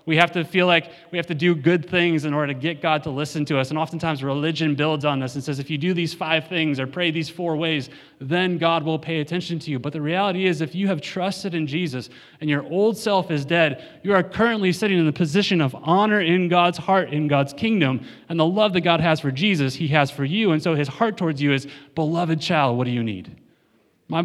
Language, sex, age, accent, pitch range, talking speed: English, male, 30-49, American, 125-170 Hz, 255 wpm